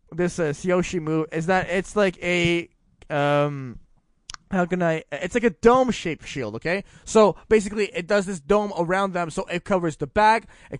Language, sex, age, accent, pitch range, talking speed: English, male, 20-39, American, 160-205 Hz, 190 wpm